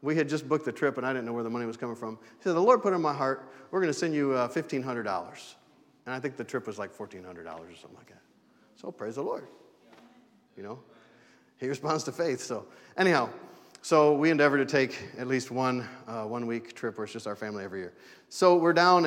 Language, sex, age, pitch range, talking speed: English, male, 40-59, 115-140 Hz, 240 wpm